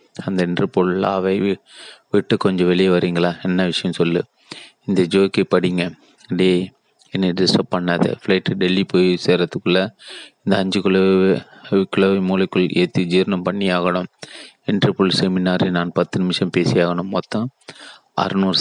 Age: 30-49